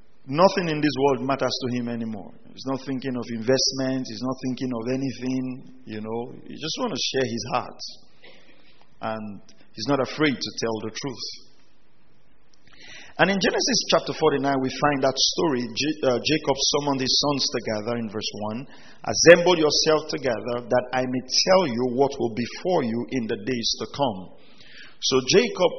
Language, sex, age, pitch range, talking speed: English, male, 50-69, 120-145 Hz, 170 wpm